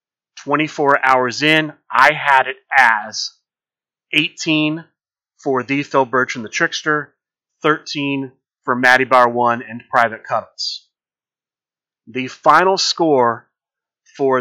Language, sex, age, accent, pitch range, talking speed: English, male, 30-49, American, 125-150 Hz, 110 wpm